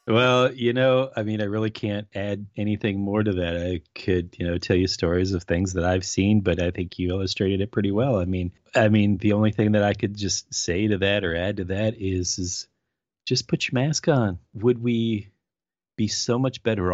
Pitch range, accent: 90-110 Hz, American